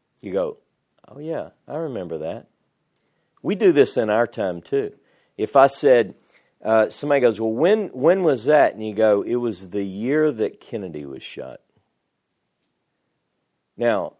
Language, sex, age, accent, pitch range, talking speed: English, male, 50-69, American, 110-165 Hz, 155 wpm